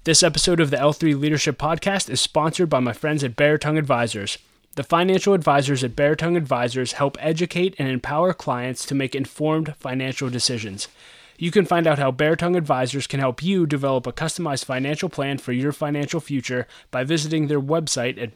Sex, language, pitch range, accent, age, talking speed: male, English, 130-155 Hz, American, 20-39, 190 wpm